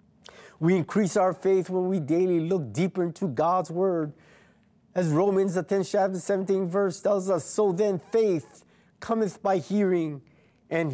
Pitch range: 130-190 Hz